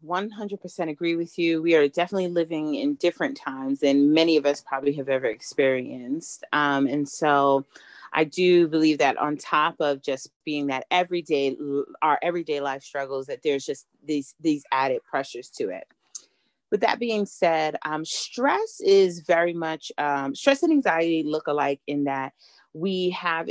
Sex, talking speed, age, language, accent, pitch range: female, 165 wpm, 30-49, English, American, 145-175 Hz